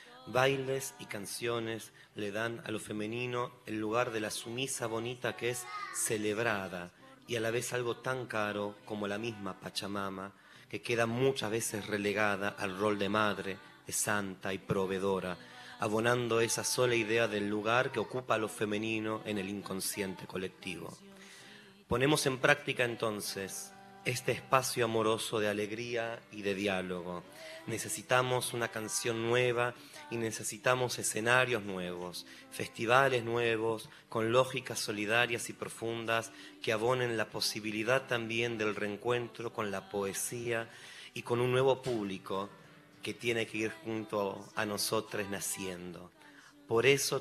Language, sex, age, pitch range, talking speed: Spanish, male, 30-49, 100-120 Hz, 135 wpm